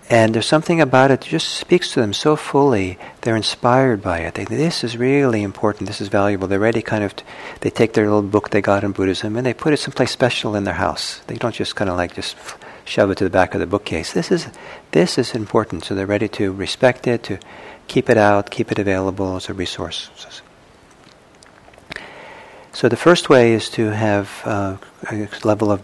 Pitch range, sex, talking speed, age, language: 100-125 Hz, male, 220 wpm, 50-69, English